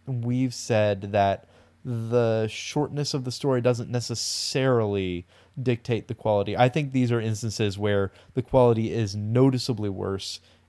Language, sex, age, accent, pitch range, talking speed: English, male, 20-39, American, 100-130 Hz, 135 wpm